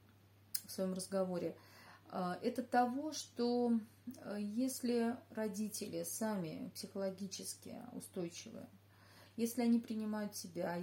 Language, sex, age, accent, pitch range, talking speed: Russian, female, 30-49, native, 165-205 Hz, 85 wpm